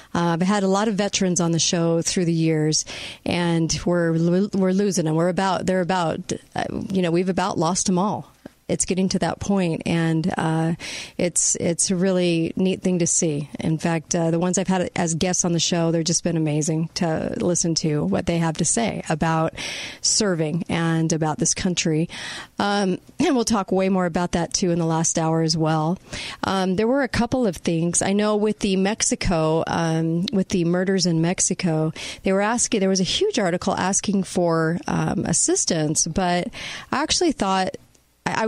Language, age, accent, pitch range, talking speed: English, 40-59, American, 165-205 Hz, 195 wpm